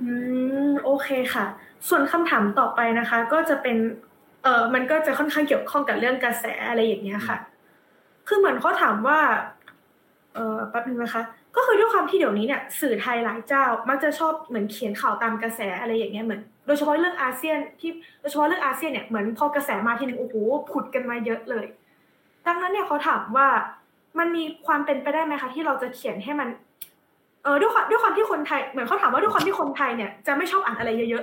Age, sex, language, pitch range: 20-39, female, Thai, 235-300 Hz